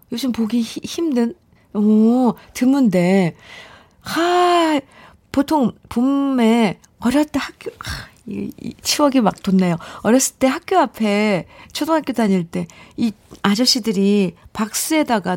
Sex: female